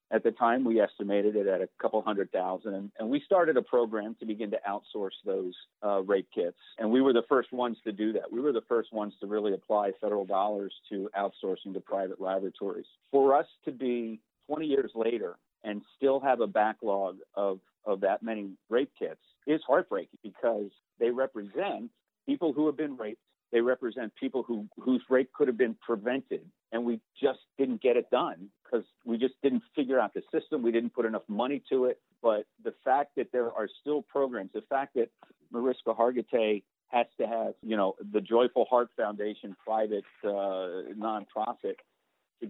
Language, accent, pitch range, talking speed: English, American, 105-135 Hz, 190 wpm